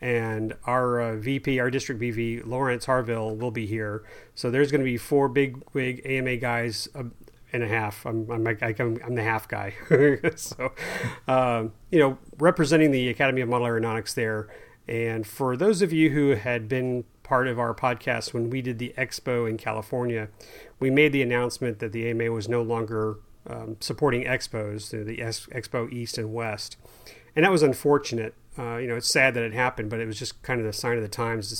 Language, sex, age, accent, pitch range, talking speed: English, male, 40-59, American, 115-135 Hz, 200 wpm